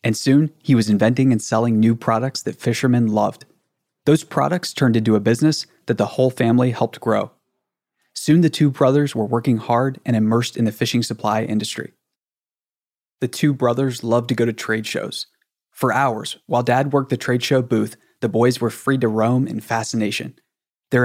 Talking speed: 185 wpm